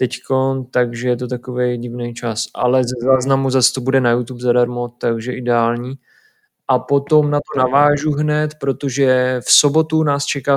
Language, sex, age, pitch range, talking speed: Czech, male, 20-39, 130-145 Hz, 165 wpm